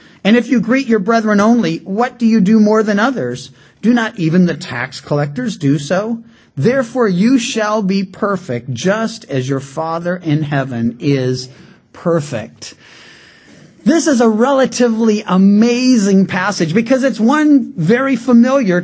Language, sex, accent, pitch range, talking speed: English, male, American, 150-225 Hz, 145 wpm